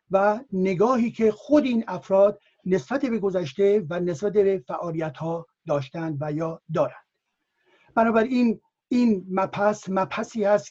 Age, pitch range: 60-79, 180-230 Hz